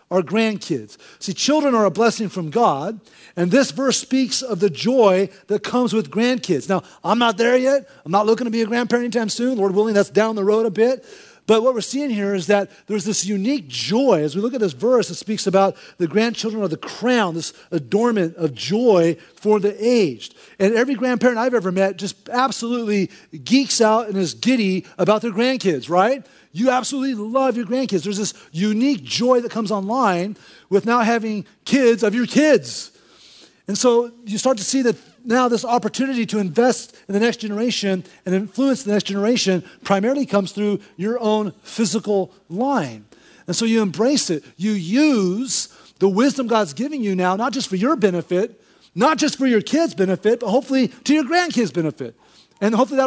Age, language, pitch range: 40-59, English, 195-245 Hz